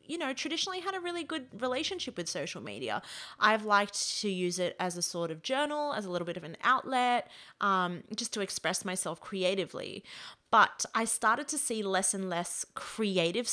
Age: 30-49